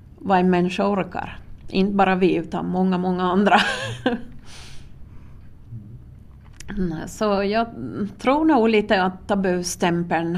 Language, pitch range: Swedish, 165-200 Hz